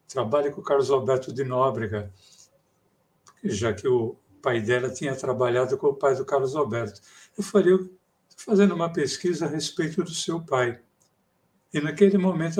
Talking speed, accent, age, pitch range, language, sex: 160 wpm, Brazilian, 60-79, 125-185 Hz, Portuguese, male